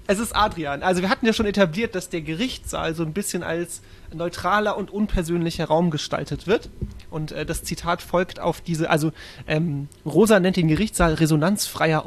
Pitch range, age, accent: 160-210 Hz, 30-49, German